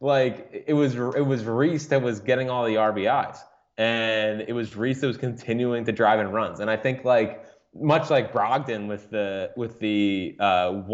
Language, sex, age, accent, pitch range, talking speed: English, male, 20-39, American, 100-125 Hz, 190 wpm